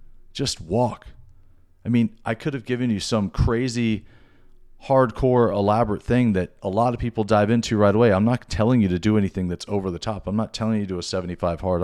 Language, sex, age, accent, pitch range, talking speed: English, male, 40-59, American, 95-120 Hz, 220 wpm